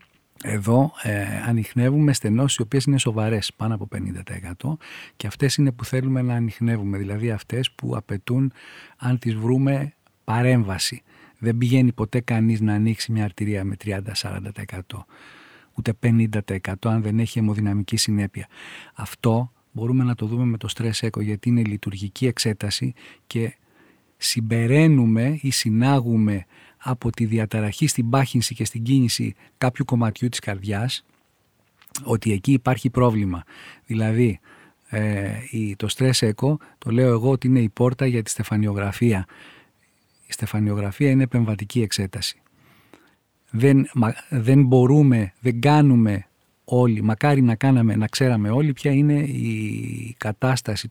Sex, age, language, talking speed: male, 40-59, Greek, 130 wpm